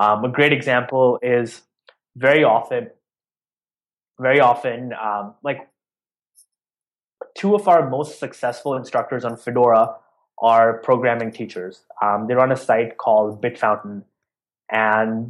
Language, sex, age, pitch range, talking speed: English, male, 20-39, 120-150 Hz, 120 wpm